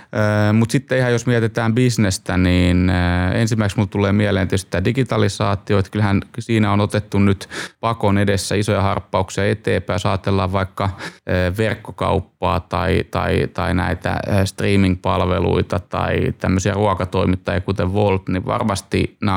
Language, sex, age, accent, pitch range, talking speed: Finnish, male, 20-39, native, 95-110 Hz, 120 wpm